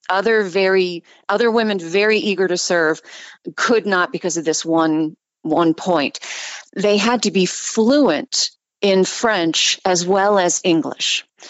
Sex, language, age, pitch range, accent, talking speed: female, English, 40-59, 170-235 Hz, American, 140 wpm